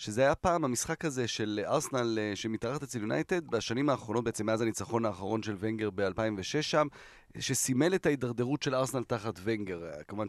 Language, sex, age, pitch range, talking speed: Hebrew, male, 30-49, 115-145 Hz, 165 wpm